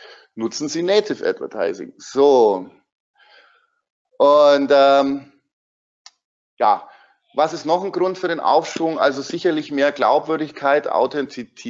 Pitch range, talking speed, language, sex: 120-175 Hz, 105 wpm, German, male